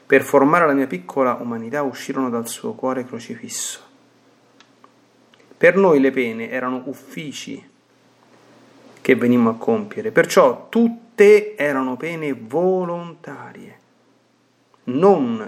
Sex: male